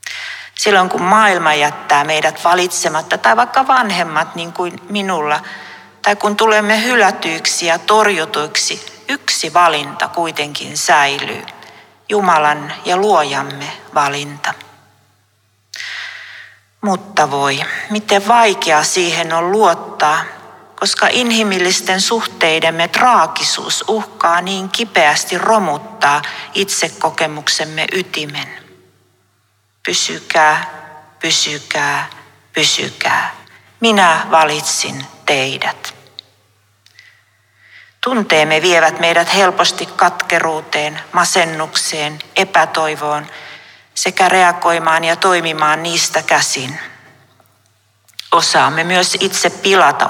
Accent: native